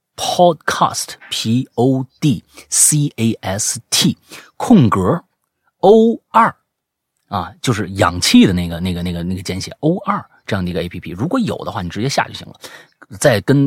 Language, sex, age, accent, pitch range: Chinese, male, 30-49, native, 90-135 Hz